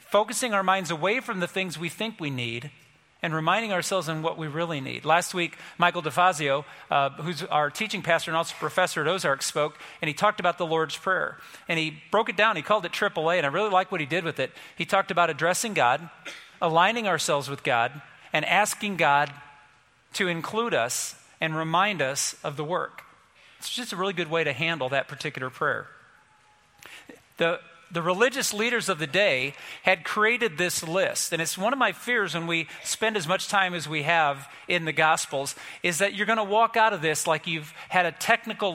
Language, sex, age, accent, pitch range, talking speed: English, male, 40-59, American, 150-195 Hz, 205 wpm